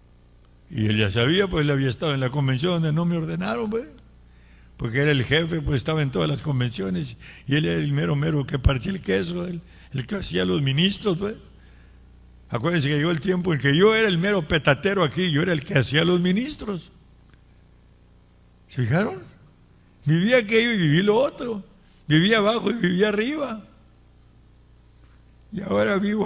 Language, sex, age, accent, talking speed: English, male, 60-79, Mexican, 180 wpm